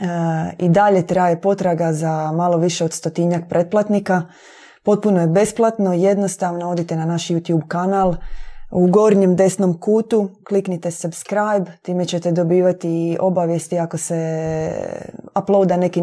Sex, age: female, 20-39